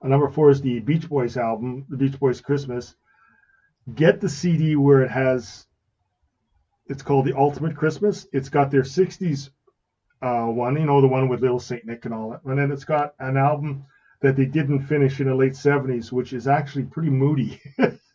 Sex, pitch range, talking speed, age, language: male, 125-150 Hz, 190 wpm, 40-59, English